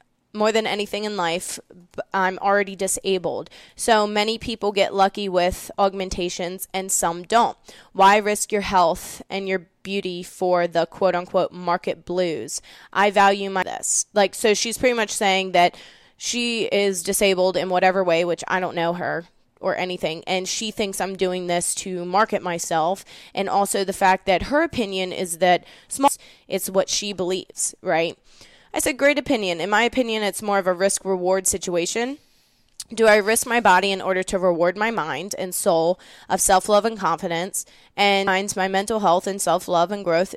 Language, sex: English, female